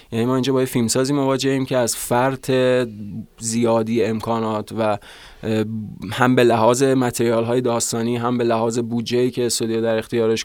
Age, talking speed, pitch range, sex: 20-39, 150 wpm, 115-135 Hz, male